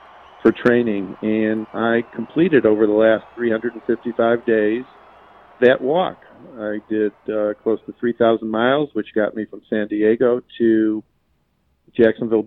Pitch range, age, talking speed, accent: 100-115 Hz, 50-69, 130 wpm, American